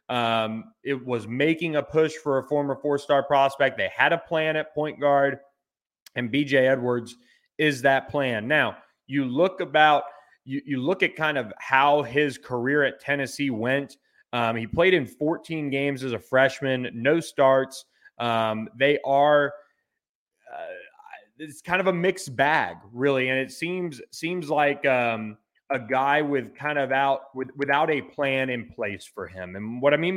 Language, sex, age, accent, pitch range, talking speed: English, male, 30-49, American, 125-145 Hz, 170 wpm